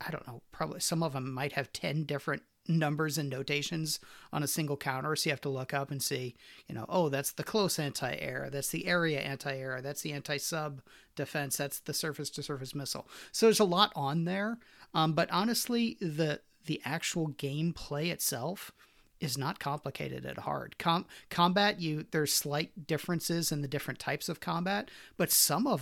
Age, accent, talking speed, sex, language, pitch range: 40-59, American, 185 wpm, male, English, 140-170 Hz